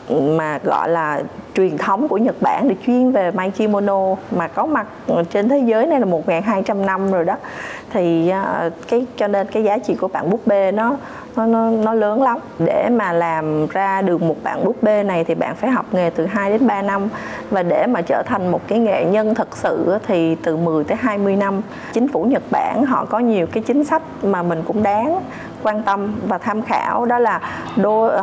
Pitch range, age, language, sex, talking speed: 185-235 Hz, 20-39, Vietnamese, female, 215 wpm